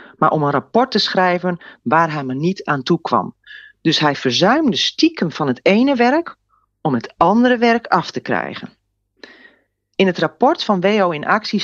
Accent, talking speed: Dutch, 180 wpm